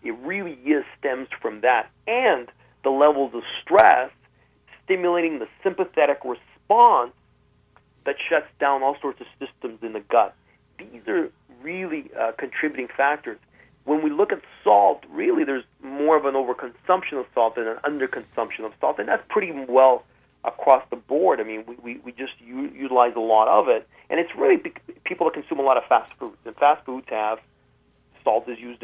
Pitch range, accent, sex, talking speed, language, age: 125-185 Hz, American, male, 175 wpm, English, 40-59